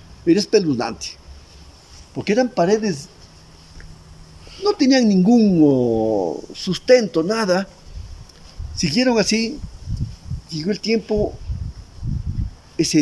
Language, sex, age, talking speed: Hungarian, male, 50-69, 75 wpm